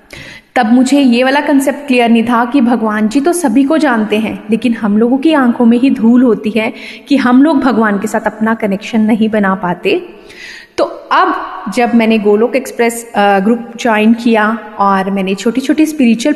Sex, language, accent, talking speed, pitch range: female, Hindi, native, 185 wpm, 220-275 Hz